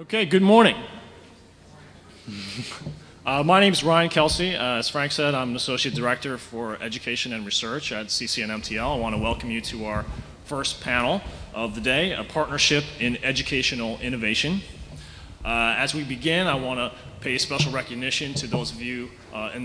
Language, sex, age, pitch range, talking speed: English, male, 30-49, 110-140 Hz, 170 wpm